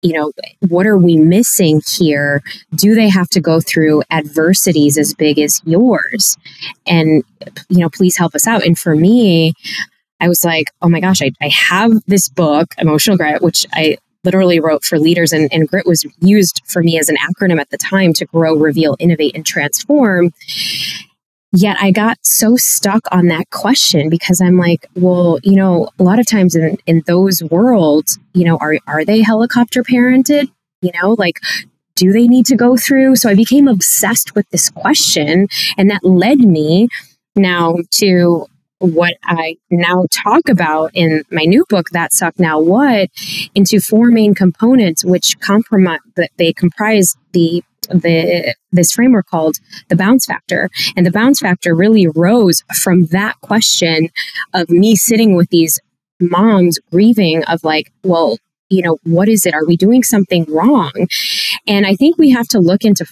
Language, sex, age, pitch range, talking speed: English, female, 20-39, 165-205 Hz, 175 wpm